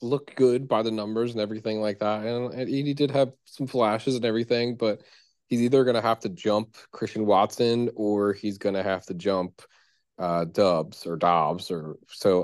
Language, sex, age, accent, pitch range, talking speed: English, male, 20-39, American, 90-120 Hz, 190 wpm